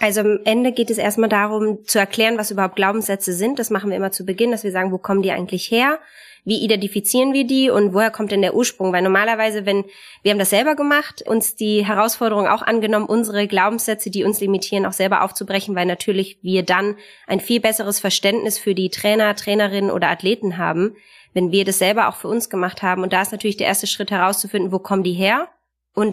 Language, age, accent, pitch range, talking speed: German, 20-39, German, 195-225 Hz, 220 wpm